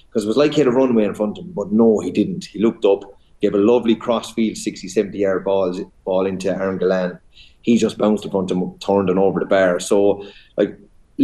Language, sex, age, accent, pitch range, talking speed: English, male, 30-49, Irish, 95-120 Hz, 240 wpm